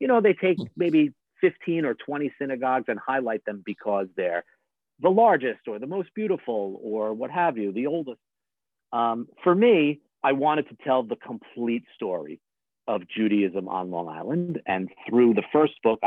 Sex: male